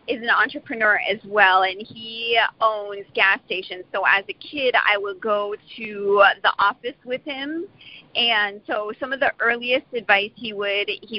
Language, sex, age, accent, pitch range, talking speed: English, female, 40-59, American, 185-220 Hz, 170 wpm